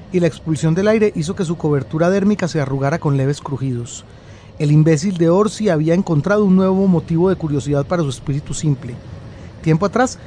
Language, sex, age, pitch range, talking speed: Spanish, male, 30-49, 145-190 Hz, 185 wpm